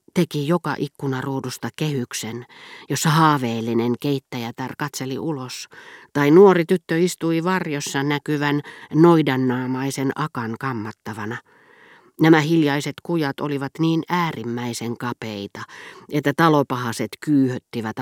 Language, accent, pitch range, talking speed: Finnish, native, 125-160 Hz, 95 wpm